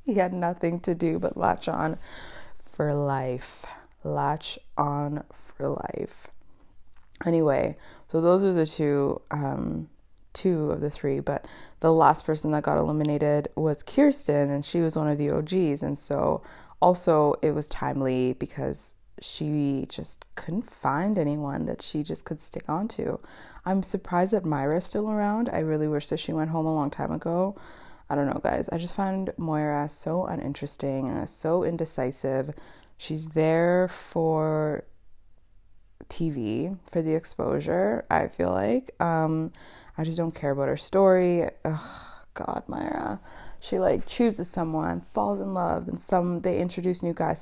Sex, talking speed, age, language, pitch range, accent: female, 155 wpm, 20-39, English, 145-180 Hz, American